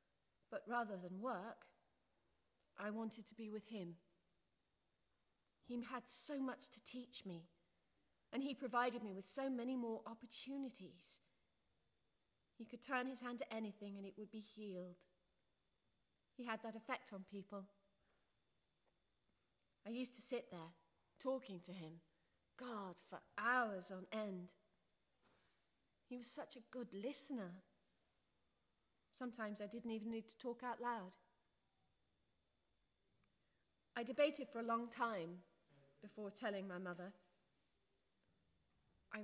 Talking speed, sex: 125 wpm, female